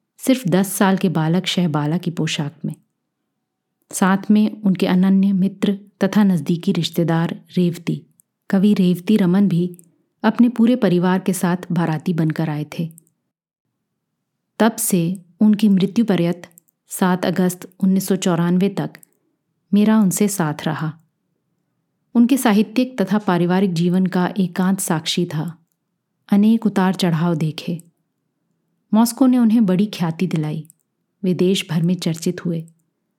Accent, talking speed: native, 125 wpm